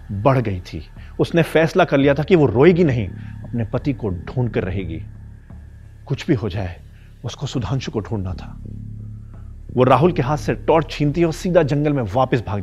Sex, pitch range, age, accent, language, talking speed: male, 105-150 Hz, 40-59, native, Hindi, 190 wpm